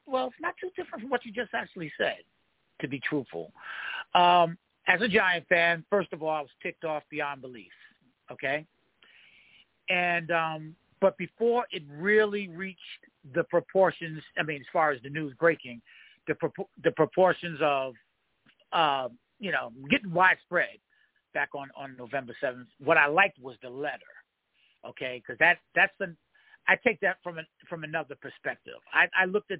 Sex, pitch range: male, 155-200 Hz